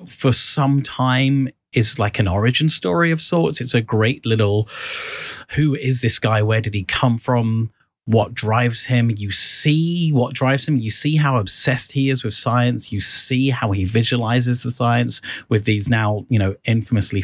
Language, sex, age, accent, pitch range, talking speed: English, male, 30-49, British, 95-125 Hz, 180 wpm